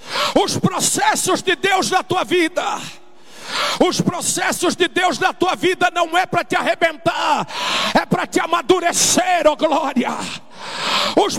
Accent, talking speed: Brazilian, 135 wpm